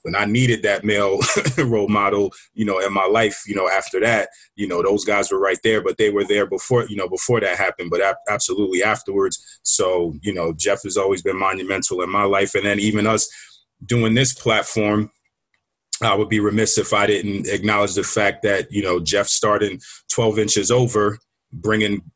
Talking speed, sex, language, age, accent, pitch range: 200 wpm, male, English, 30-49, American, 100-115 Hz